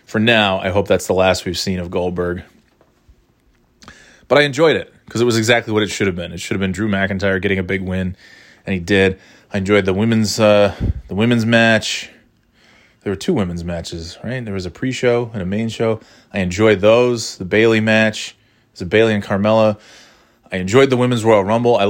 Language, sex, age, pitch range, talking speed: English, male, 20-39, 95-120 Hz, 210 wpm